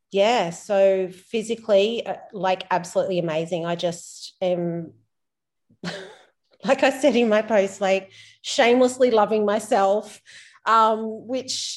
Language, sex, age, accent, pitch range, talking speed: English, female, 30-49, Australian, 175-210 Hz, 105 wpm